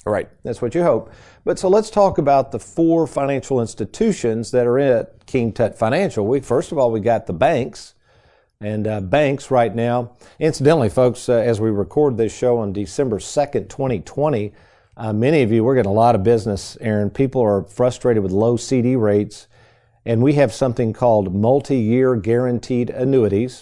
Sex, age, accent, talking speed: male, 50-69, American, 185 wpm